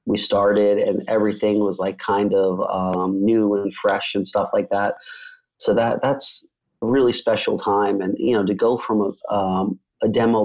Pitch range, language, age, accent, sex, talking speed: 100-115 Hz, English, 30-49, American, male, 190 wpm